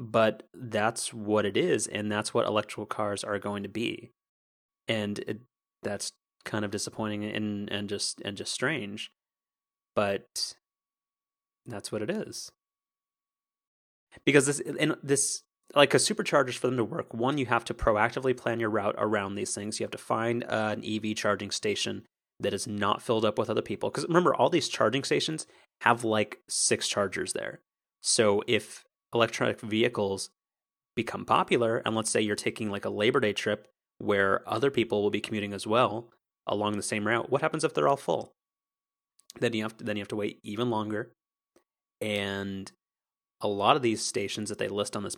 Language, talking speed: English, 180 wpm